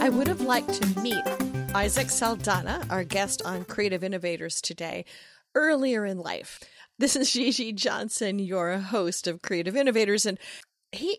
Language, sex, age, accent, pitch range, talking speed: English, female, 40-59, American, 190-250 Hz, 150 wpm